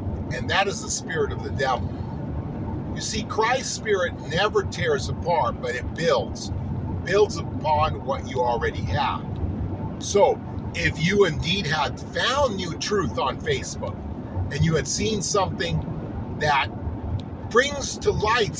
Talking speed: 140 wpm